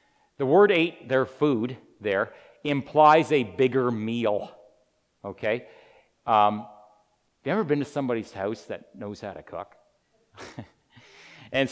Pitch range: 115-145 Hz